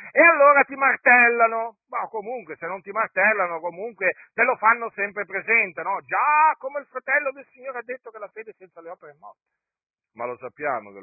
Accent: native